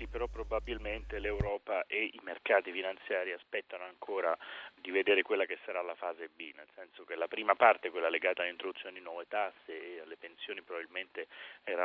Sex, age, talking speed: male, 30-49, 170 wpm